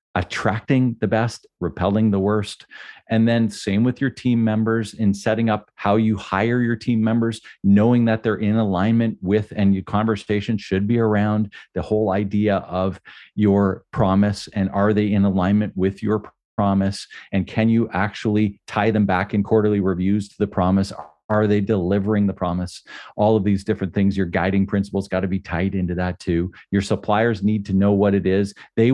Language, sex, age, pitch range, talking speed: English, male, 40-59, 95-110 Hz, 185 wpm